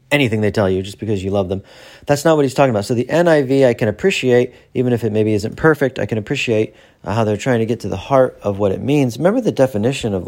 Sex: male